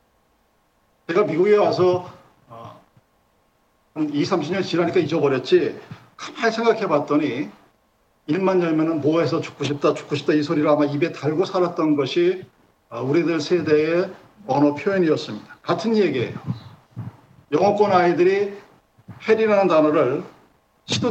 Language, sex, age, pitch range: Korean, male, 50-69, 150-185 Hz